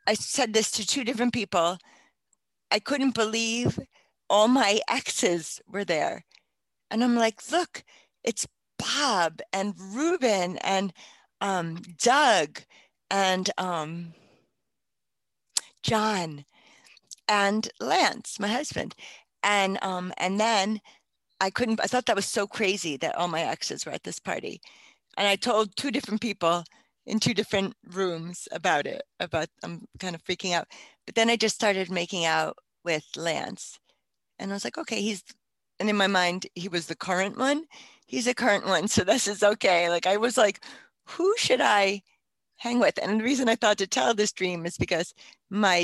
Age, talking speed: 40-59, 160 wpm